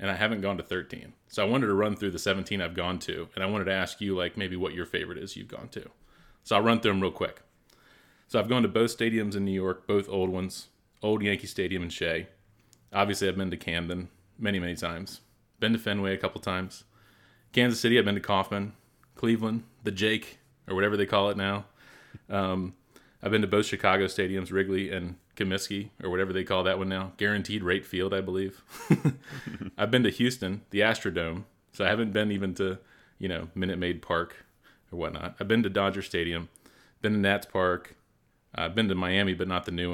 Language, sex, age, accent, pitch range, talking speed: English, male, 30-49, American, 90-105 Hz, 215 wpm